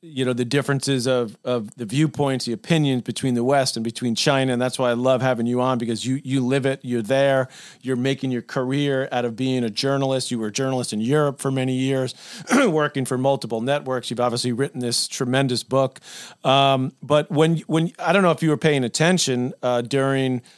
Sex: male